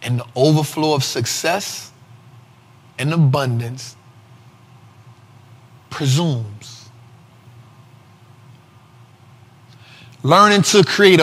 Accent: American